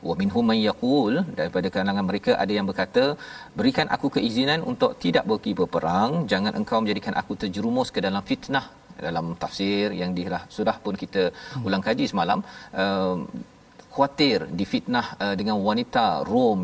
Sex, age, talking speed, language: male, 40-59, 140 wpm, Malayalam